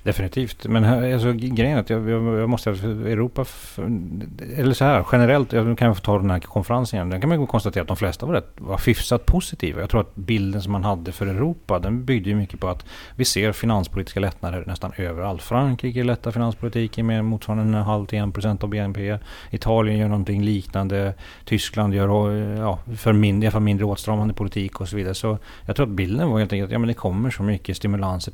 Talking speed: 205 wpm